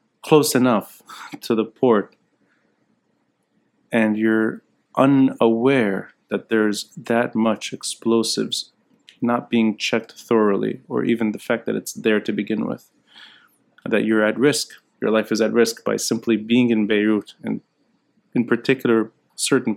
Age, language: 30-49, English